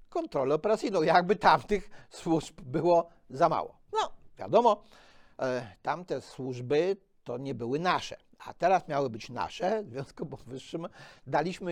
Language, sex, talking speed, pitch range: Polish, male, 135 wpm, 130-195 Hz